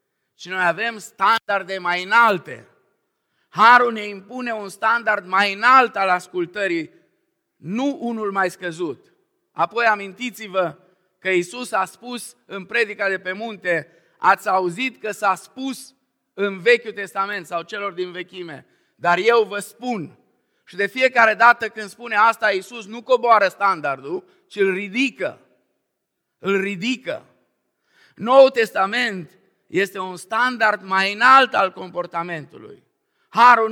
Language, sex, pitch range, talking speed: Romanian, male, 185-240 Hz, 130 wpm